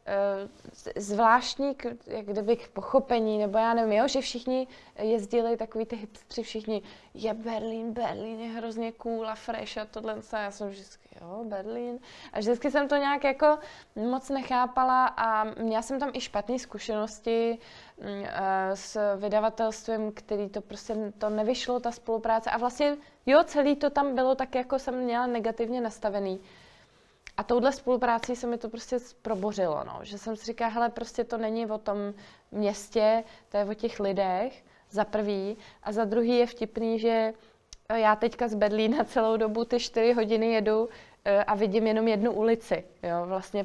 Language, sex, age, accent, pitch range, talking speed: Czech, female, 20-39, native, 210-235 Hz, 165 wpm